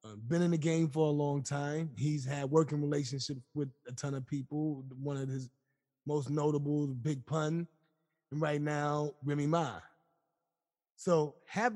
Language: English